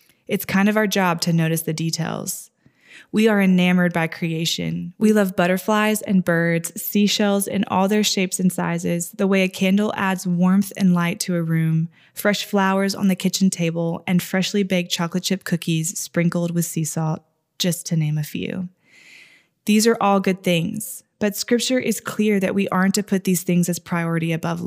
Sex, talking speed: female, 185 wpm